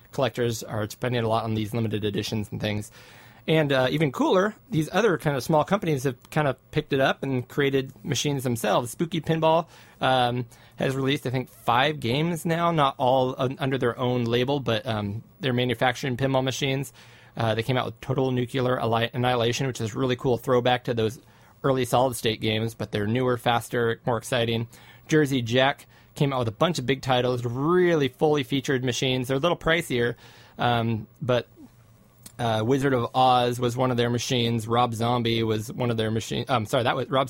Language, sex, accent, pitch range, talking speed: English, male, American, 115-130 Hz, 195 wpm